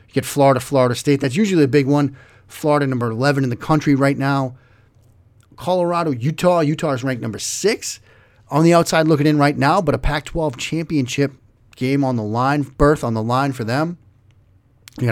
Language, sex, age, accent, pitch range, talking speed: English, male, 30-49, American, 110-145 Hz, 185 wpm